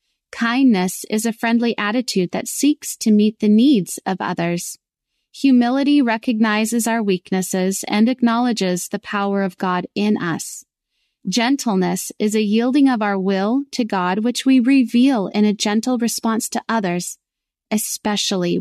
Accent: American